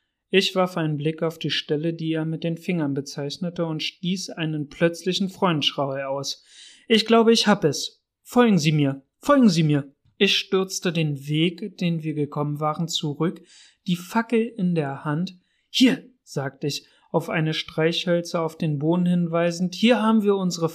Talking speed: 170 wpm